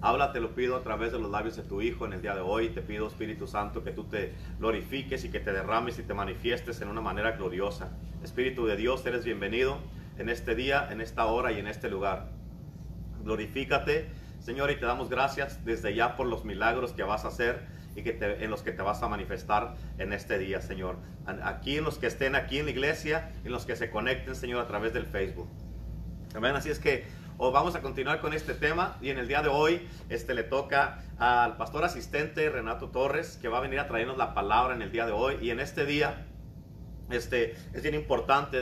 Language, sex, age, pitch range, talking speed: Spanish, male, 40-59, 115-145 Hz, 225 wpm